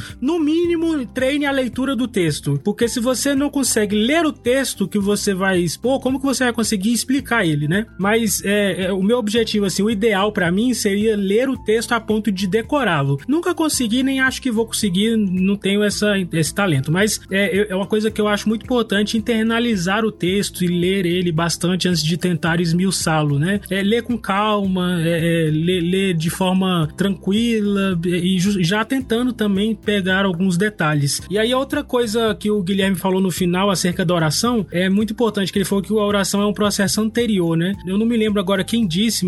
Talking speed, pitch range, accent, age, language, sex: 205 wpm, 175-220 Hz, Brazilian, 20-39, Portuguese, male